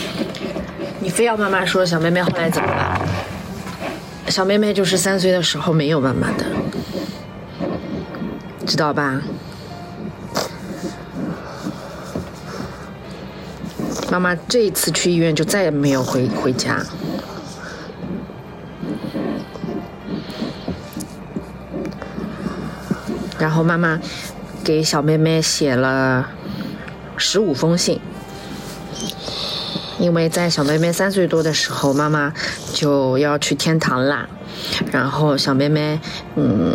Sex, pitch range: female, 145-185 Hz